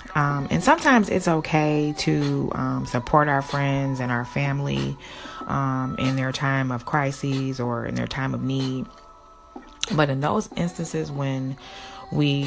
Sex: female